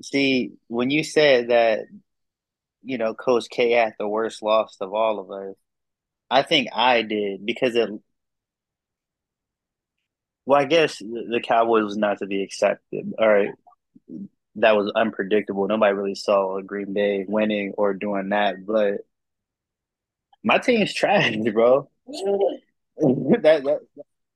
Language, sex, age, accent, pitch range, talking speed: English, male, 20-39, American, 105-155 Hz, 140 wpm